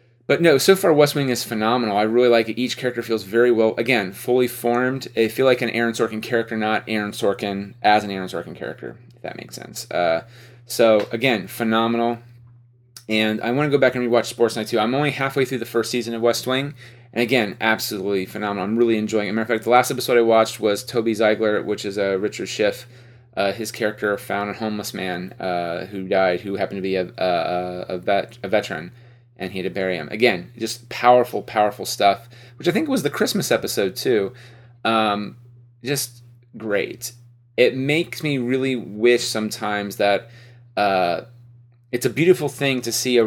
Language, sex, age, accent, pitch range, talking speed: English, male, 30-49, American, 105-120 Hz, 205 wpm